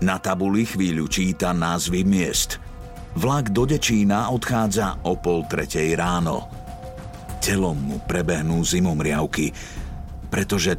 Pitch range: 85-110 Hz